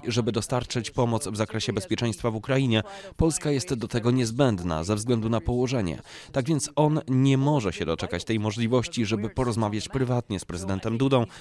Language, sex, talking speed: Polish, male, 170 wpm